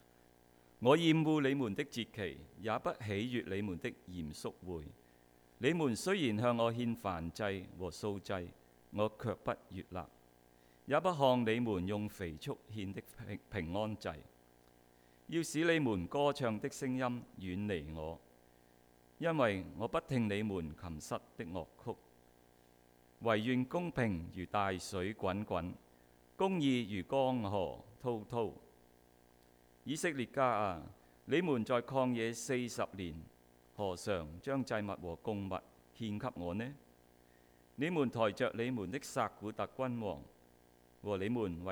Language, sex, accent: English, male, Chinese